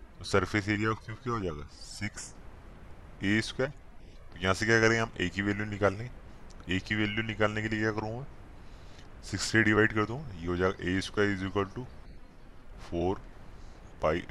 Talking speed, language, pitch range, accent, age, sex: 155 wpm, Hindi, 85-105 Hz, native, 20-39, male